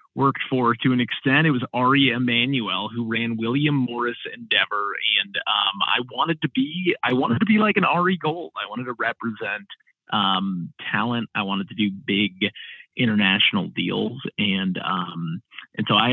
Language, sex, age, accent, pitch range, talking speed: English, male, 30-49, American, 100-130 Hz, 170 wpm